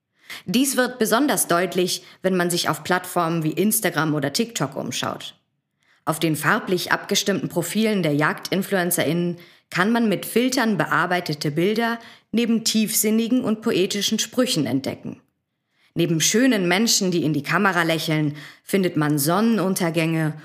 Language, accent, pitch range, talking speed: German, German, 160-210 Hz, 130 wpm